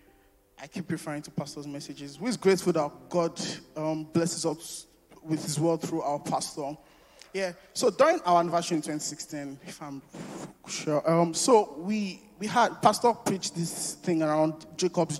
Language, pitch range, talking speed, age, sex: English, 150-175 Hz, 160 wpm, 20-39, male